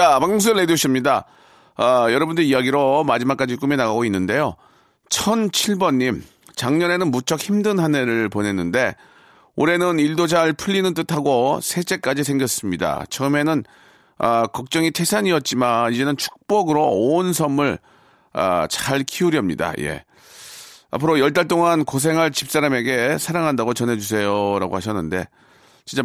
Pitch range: 105-155 Hz